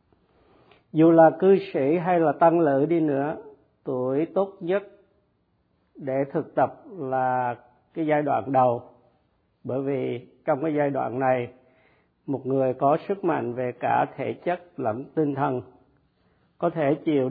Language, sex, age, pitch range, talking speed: Vietnamese, male, 50-69, 130-160 Hz, 150 wpm